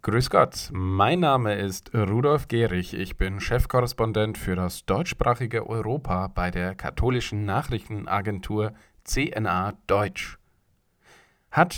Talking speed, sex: 105 wpm, male